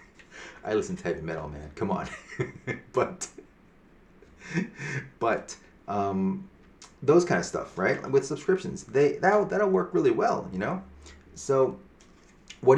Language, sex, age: English, male, 30-49